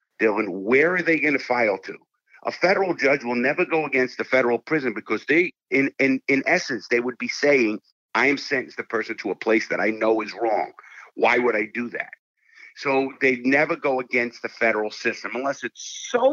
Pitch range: 120-185 Hz